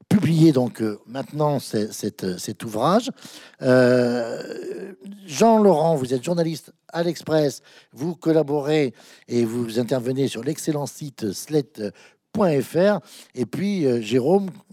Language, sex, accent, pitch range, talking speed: French, male, French, 115-170 Hz, 110 wpm